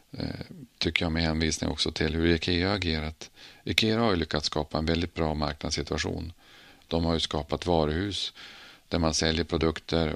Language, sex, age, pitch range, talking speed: Swedish, male, 40-59, 80-90 Hz, 160 wpm